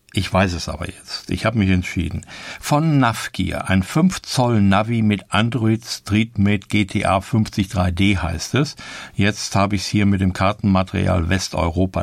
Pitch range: 95-115 Hz